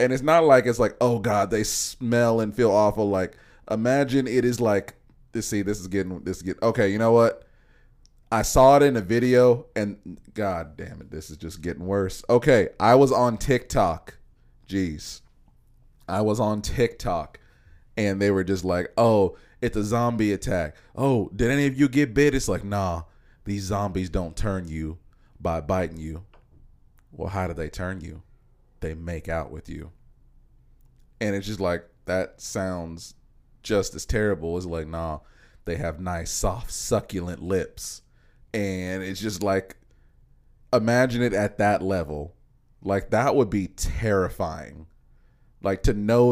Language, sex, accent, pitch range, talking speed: English, male, American, 90-115 Hz, 165 wpm